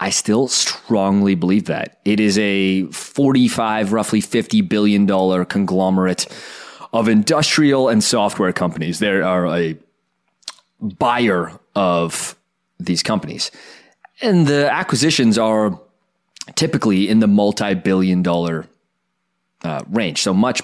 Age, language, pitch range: 30-49, English, 95-120 Hz